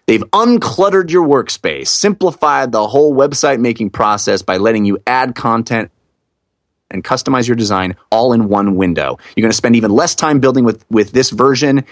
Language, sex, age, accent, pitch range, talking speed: English, male, 30-49, American, 115-160 Hz, 170 wpm